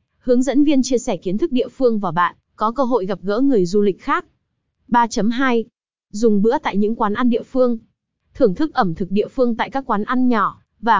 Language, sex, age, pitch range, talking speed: Vietnamese, female, 20-39, 205-255 Hz, 225 wpm